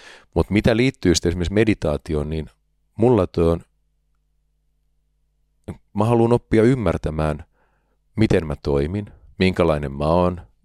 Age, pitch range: 40-59, 80-95 Hz